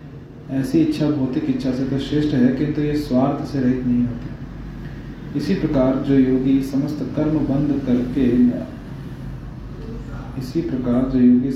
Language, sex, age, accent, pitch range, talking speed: Hindi, male, 30-49, native, 125-145 Hz, 145 wpm